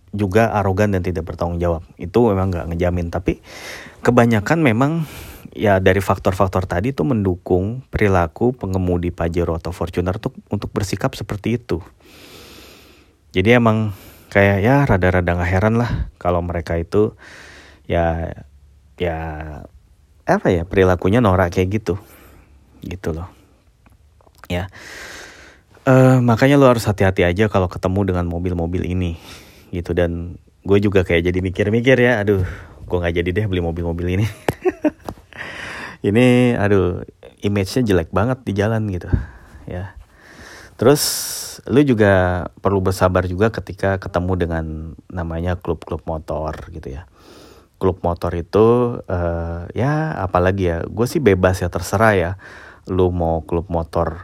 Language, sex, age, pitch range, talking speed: Indonesian, male, 30-49, 85-105 Hz, 130 wpm